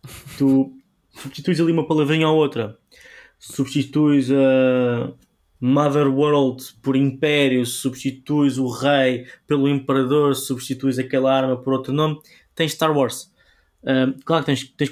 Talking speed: 130 wpm